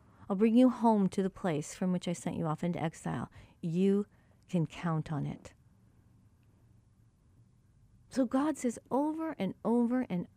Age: 40-59